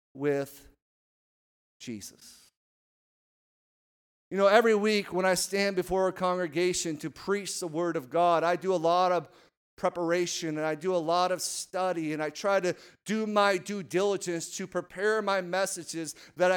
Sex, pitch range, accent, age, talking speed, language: male, 170-205 Hz, American, 40-59, 160 wpm, English